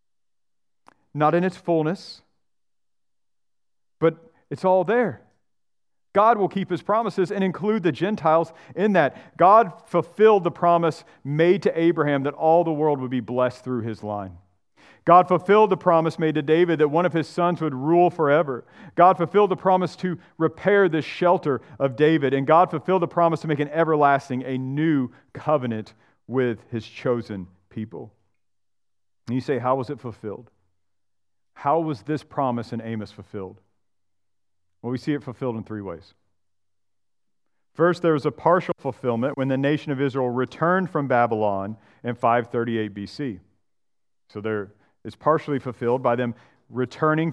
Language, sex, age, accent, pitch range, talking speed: English, male, 40-59, American, 115-165 Hz, 155 wpm